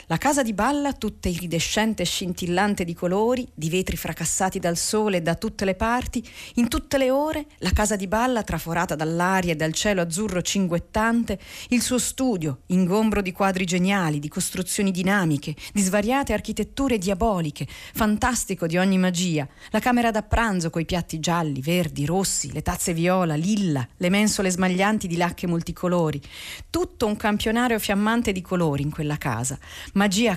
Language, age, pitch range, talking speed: Italian, 40-59, 170-220 Hz, 160 wpm